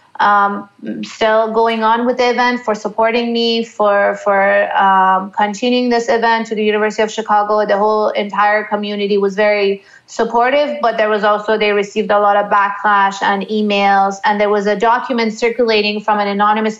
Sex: female